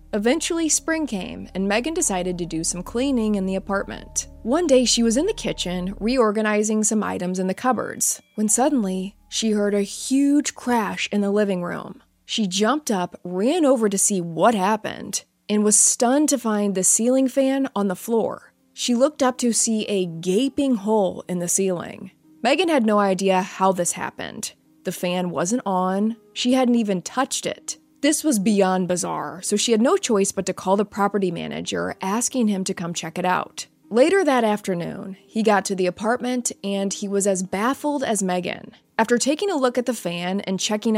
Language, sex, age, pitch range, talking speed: English, female, 20-39, 185-240 Hz, 190 wpm